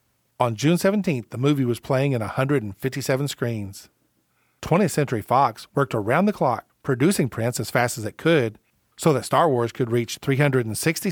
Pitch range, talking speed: 115-145 Hz, 165 wpm